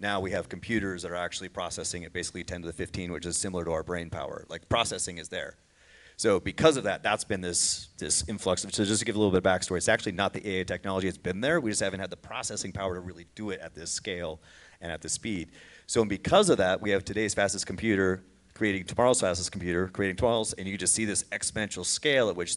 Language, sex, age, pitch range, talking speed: English, male, 30-49, 90-110 Hz, 255 wpm